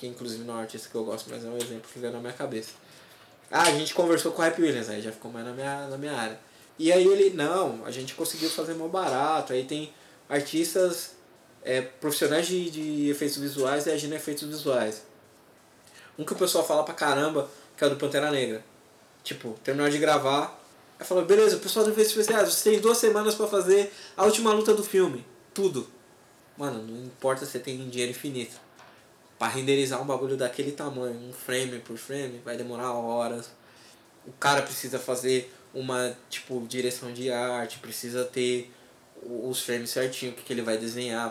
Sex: male